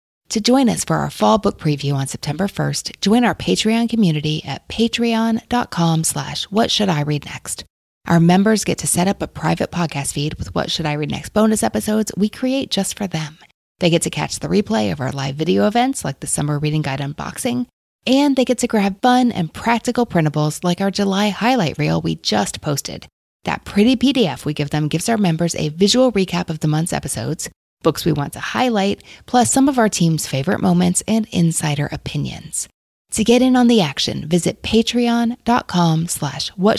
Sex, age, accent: female, 30-49, American